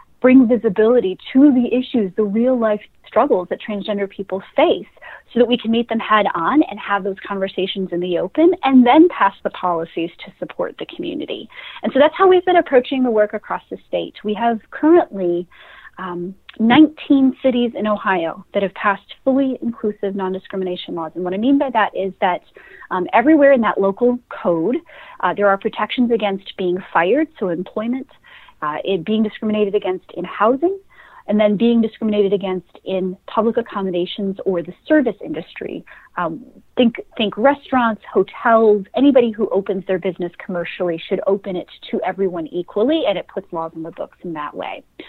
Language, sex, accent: English, female, American